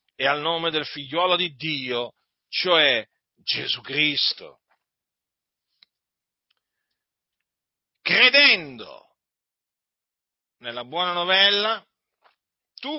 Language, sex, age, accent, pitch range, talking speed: Italian, male, 50-69, native, 165-230 Hz, 70 wpm